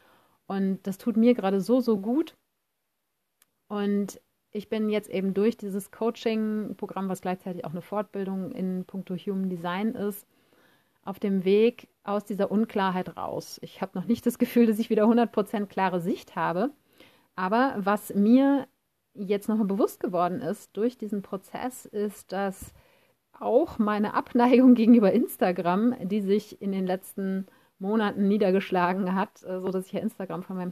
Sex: female